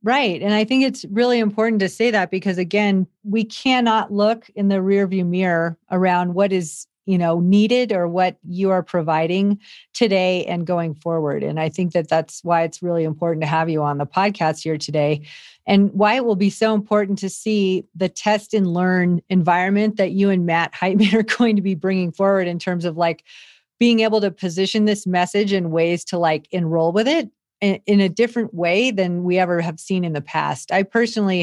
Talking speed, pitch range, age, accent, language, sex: 205 wpm, 175-210 Hz, 40-59, American, English, female